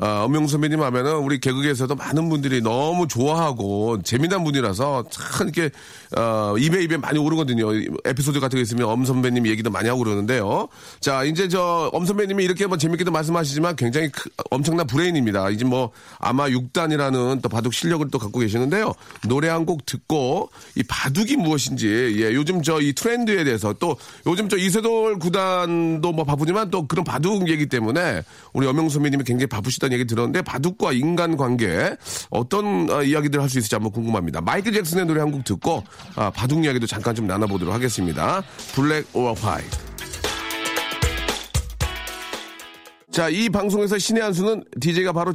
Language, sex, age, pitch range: Korean, male, 40-59, 120-175 Hz